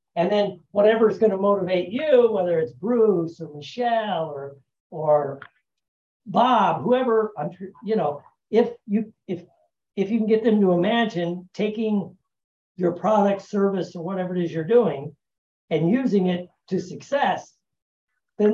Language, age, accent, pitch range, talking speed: English, 60-79, American, 160-215 Hz, 150 wpm